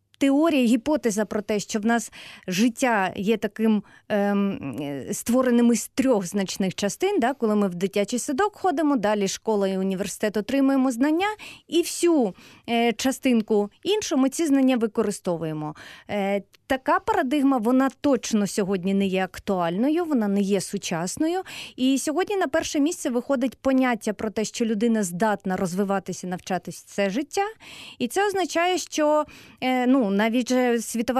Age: 30-49